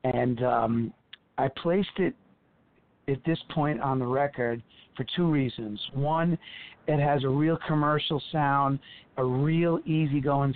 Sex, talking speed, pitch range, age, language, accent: male, 135 wpm, 130-150 Hz, 50-69, English, American